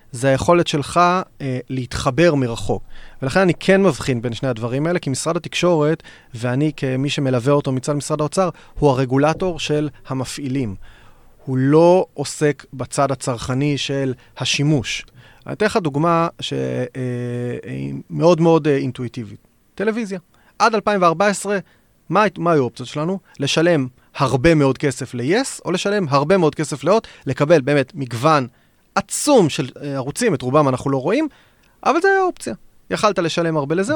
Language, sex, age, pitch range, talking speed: Hebrew, male, 30-49, 130-185 Hz, 145 wpm